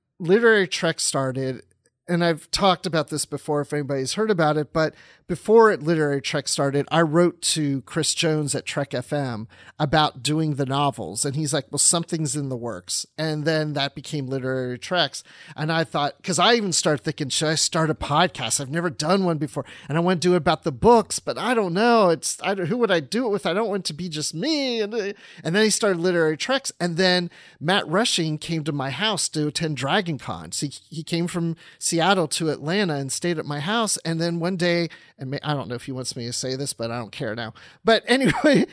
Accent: American